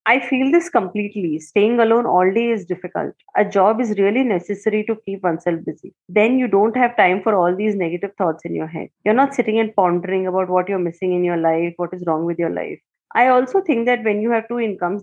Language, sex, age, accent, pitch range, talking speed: English, female, 20-39, Indian, 185-245 Hz, 235 wpm